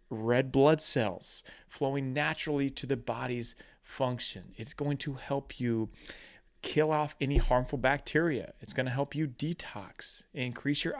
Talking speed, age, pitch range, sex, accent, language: 145 wpm, 30-49, 100-145 Hz, male, American, English